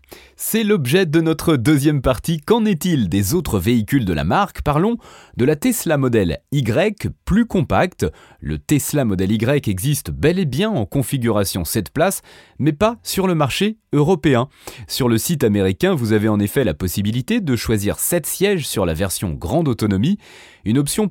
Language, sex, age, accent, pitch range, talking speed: French, male, 30-49, French, 110-175 Hz, 175 wpm